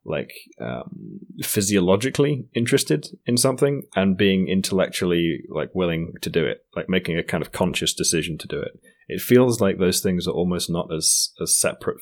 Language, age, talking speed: English, 30-49, 175 wpm